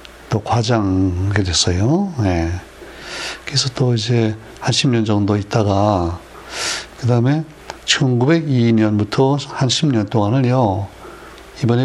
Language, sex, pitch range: Korean, male, 110-135 Hz